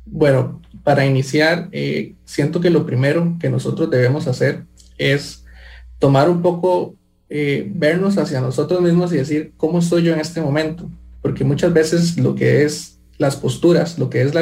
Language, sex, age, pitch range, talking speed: English, male, 20-39, 140-165 Hz, 170 wpm